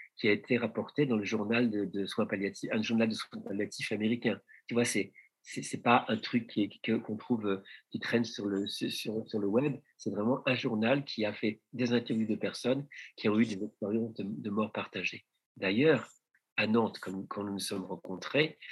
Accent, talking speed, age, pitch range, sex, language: French, 205 wpm, 50-69, 105-135 Hz, male, French